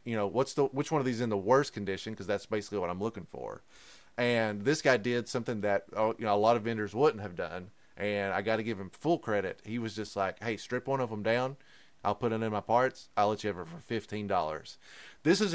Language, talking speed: English, 265 wpm